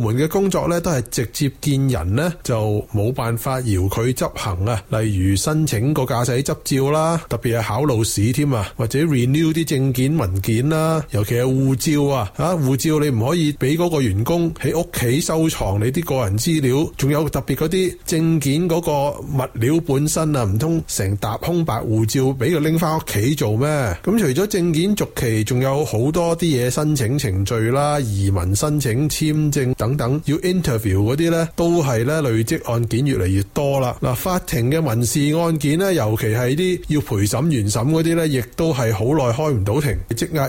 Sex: male